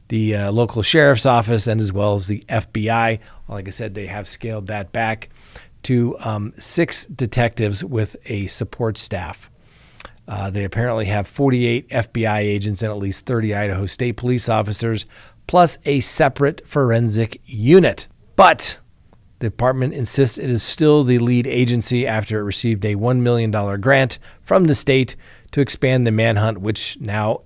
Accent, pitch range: American, 105-130 Hz